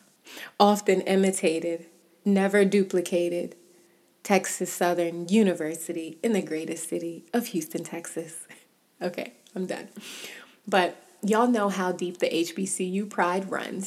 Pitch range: 175-200 Hz